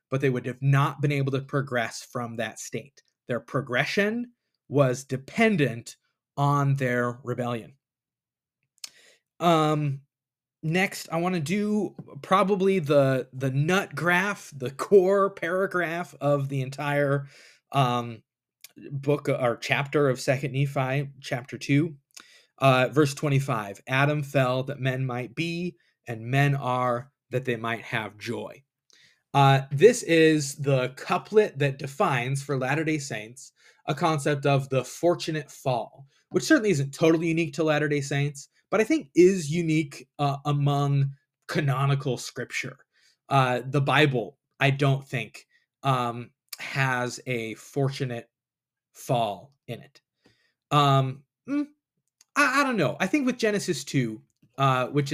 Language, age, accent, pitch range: English, 20-39, American, 130-155 Hz